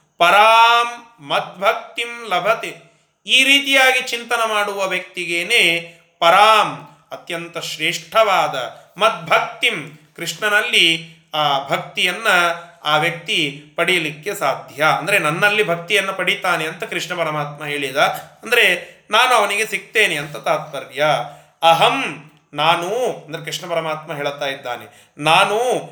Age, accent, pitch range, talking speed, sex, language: 30-49, native, 160-220 Hz, 95 wpm, male, Kannada